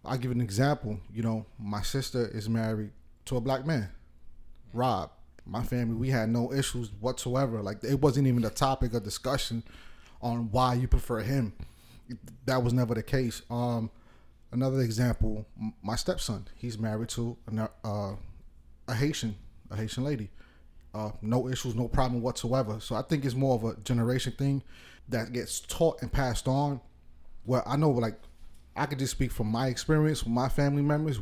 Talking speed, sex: 175 wpm, male